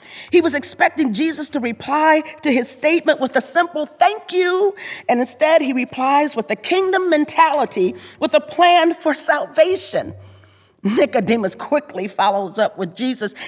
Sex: female